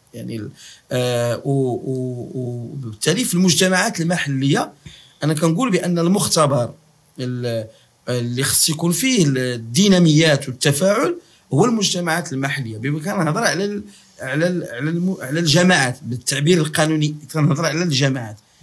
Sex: male